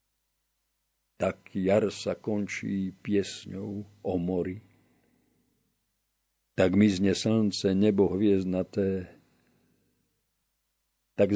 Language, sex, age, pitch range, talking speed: Slovak, male, 50-69, 85-100 Hz, 70 wpm